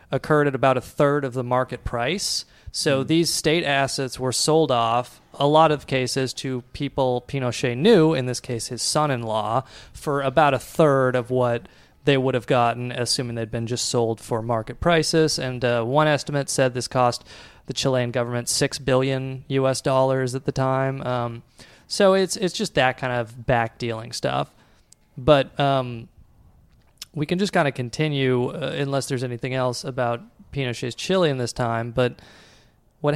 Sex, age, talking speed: male, 30-49, 170 wpm